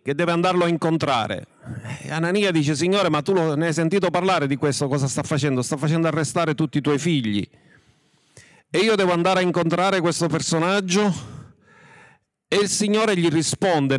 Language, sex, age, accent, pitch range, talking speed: Italian, male, 50-69, native, 150-200 Hz, 165 wpm